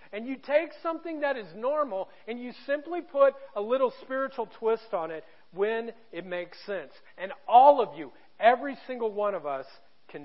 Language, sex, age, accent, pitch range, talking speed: English, male, 40-59, American, 215-270 Hz, 180 wpm